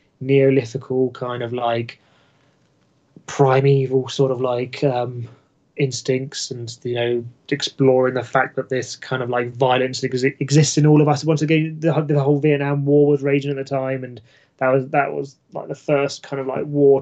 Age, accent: 20-39, British